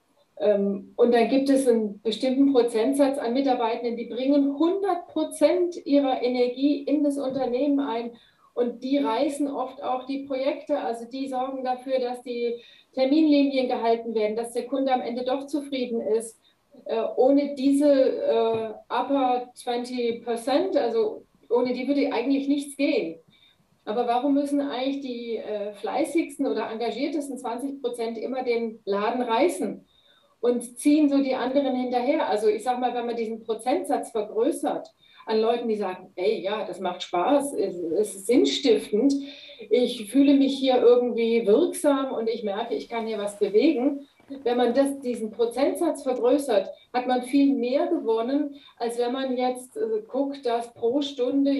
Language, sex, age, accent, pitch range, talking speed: German, female, 40-59, German, 230-280 Hz, 150 wpm